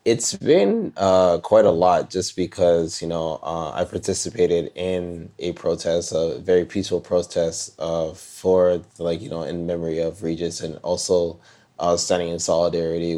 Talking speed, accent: 165 wpm, American